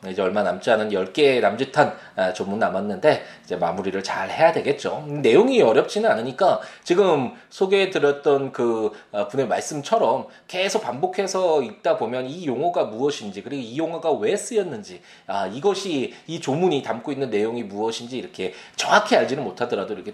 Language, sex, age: Korean, male, 20-39